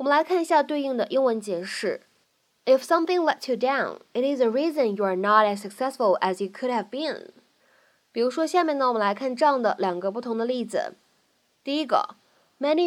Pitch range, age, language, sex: 205-290 Hz, 10-29, Chinese, female